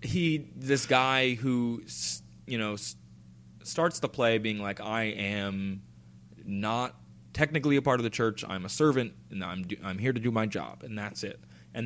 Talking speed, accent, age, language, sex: 180 wpm, American, 20-39, English, male